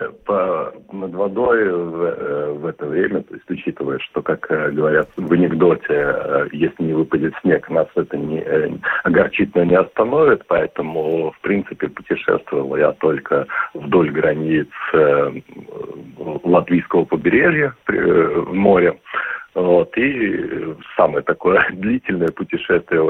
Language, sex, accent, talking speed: Russian, male, native, 105 wpm